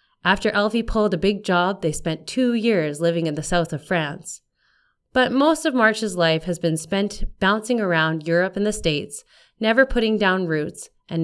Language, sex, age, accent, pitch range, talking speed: English, female, 30-49, American, 155-205 Hz, 185 wpm